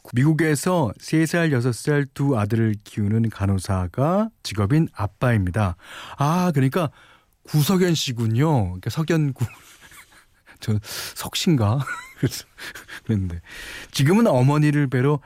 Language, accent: Korean, native